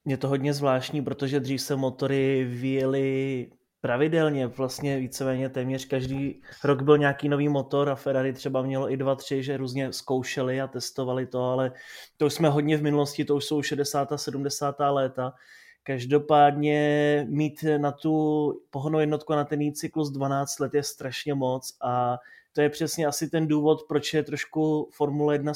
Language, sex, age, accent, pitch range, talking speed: Czech, male, 20-39, native, 130-145 Hz, 170 wpm